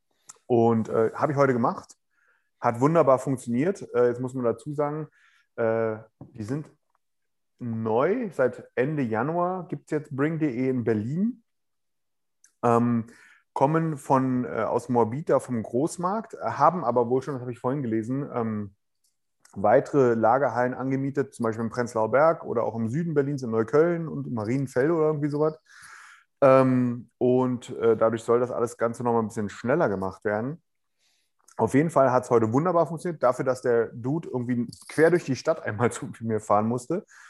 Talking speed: 165 wpm